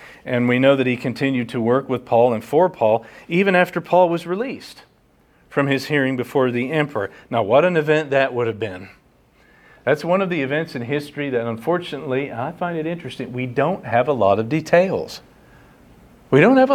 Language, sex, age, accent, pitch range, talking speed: English, male, 40-59, American, 120-160 Hz, 195 wpm